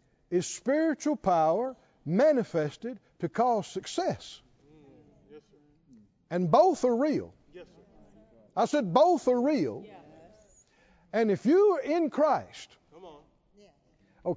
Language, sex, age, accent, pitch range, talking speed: English, male, 60-79, American, 180-275 Hz, 95 wpm